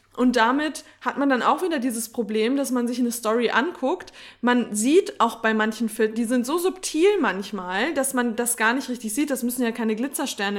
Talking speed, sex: 210 wpm, female